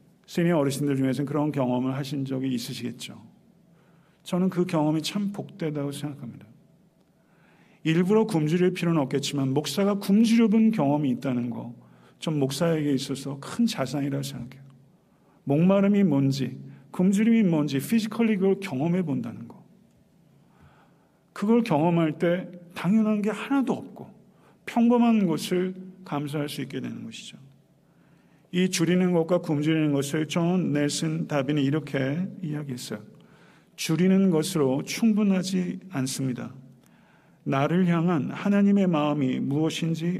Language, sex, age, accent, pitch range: Korean, male, 50-69, native, 140-190 Hz